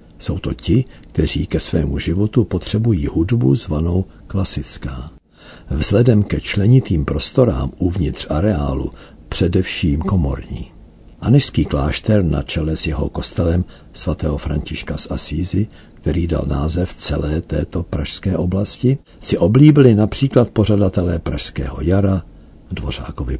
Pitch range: 75-100 Hz